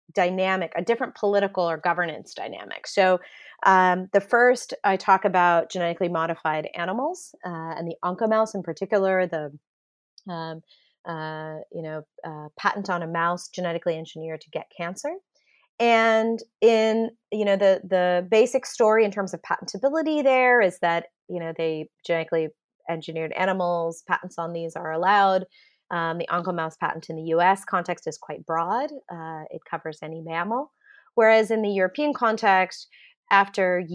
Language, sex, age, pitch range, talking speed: English, female, 30-49, 165-220 Hz, 150 wpm